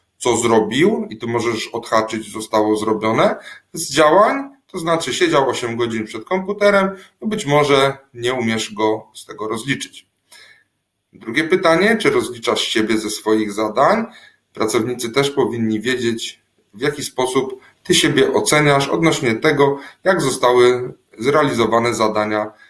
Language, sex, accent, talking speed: Polish, male, native, 130 wpm